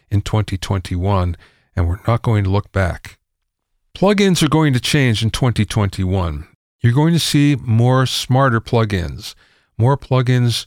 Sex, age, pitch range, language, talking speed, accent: male, 50-69, 105-140 Hz, English, 140 wpm, American